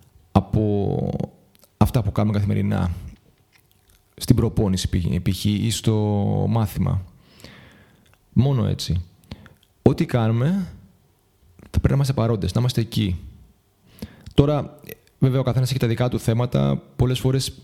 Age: 30-49